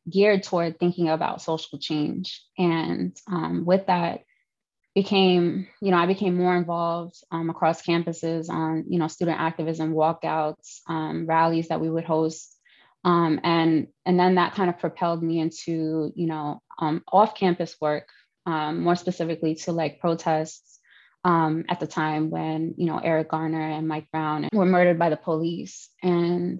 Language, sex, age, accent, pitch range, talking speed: English, female, 20-39, American, 160-180 Hz, 160 wpm